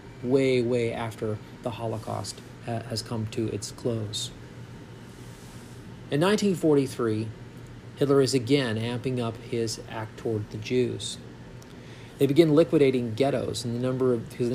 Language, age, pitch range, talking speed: English, 40-59, 115-135 Hz, 115 wpm